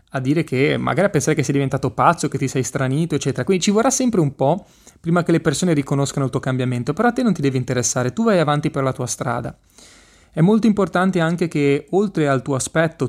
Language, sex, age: Italian, male, 30-49